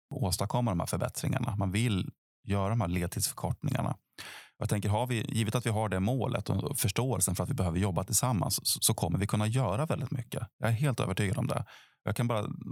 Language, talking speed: Swedish, 205 wpm